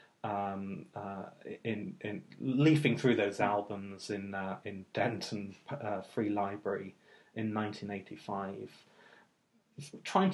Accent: British